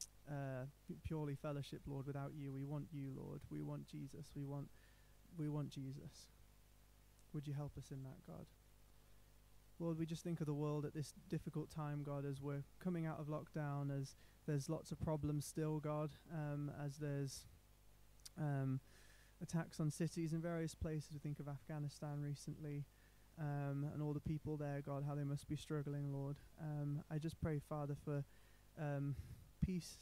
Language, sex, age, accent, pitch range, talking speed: English, male, 20-39, British, 140-155 Hz, 180 wpm